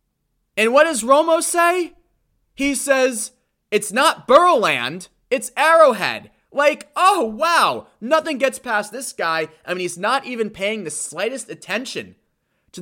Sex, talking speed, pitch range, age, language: male, 140 wpm, 155-240 Hz, 20-39, English